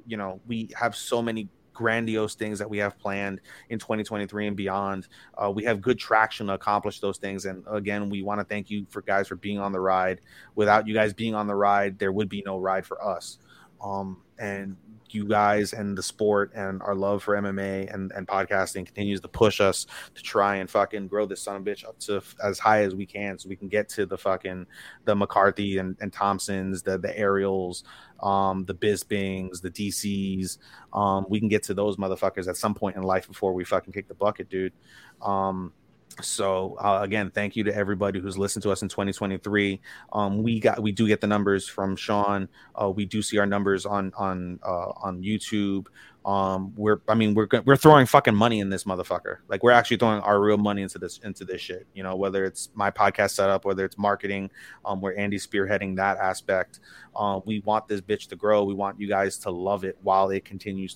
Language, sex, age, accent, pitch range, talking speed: English, male, 30-49, American, 95-105 Hz, 220 wpm